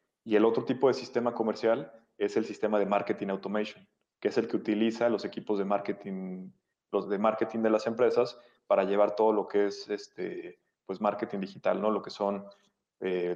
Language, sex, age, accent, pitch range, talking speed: Spanish, male, 30-49, Mexican, 100-115 Hz, 195 wpm